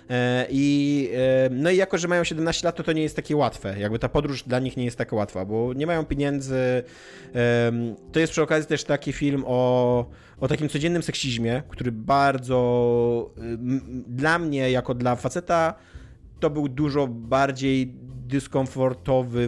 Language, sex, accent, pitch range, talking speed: Polish, male, native, 120-145 Hz, 155 wpm